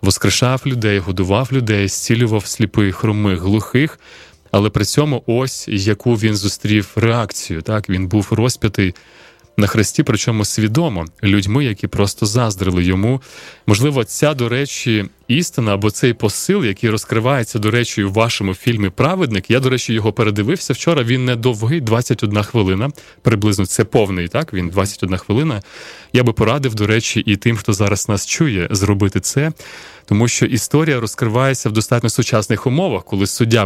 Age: 20-39